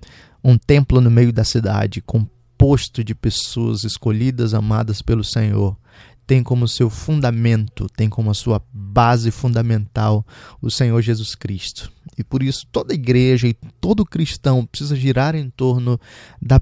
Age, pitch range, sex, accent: 20-39, 110-135 Hz, male, Brazilian